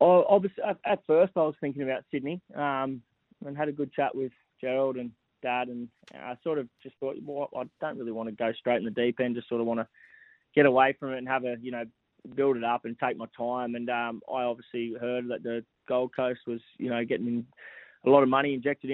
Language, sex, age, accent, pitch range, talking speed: English, male, 20-39, Australian, 115-130 Hz, 240 wpm